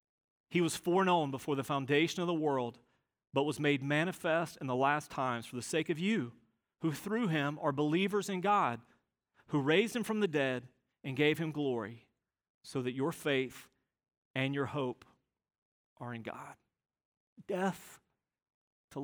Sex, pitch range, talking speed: male, 125-170 Hz, 160 wpm